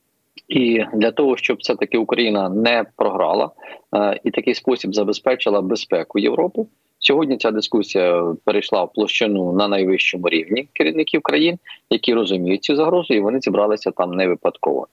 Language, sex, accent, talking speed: Ukrainian, male, native, 150 wpm